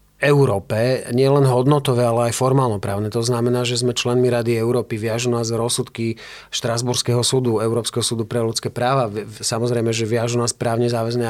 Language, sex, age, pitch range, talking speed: Slovak, male, 40-59, 115-135 Hz, 155 wpm